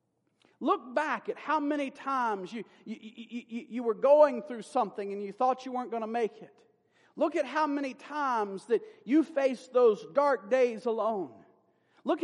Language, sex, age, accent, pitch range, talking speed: English, male, 50-69, American, 240-310 Hz, 175 wpm